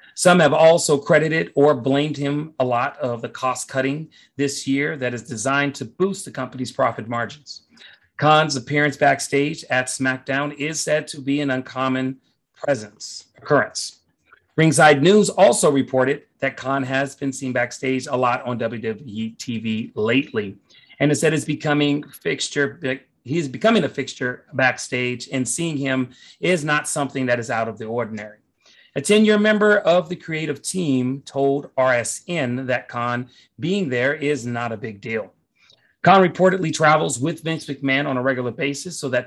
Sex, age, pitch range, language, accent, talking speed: male, 30-49, 125-155 Hz, English, American, 155 wpm